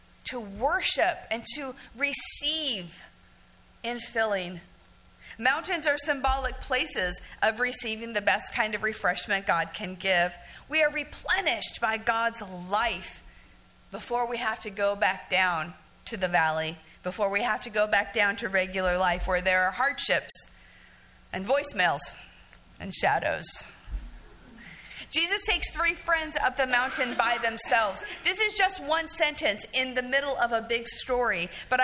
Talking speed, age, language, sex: 145 wpm, 50-69, English, female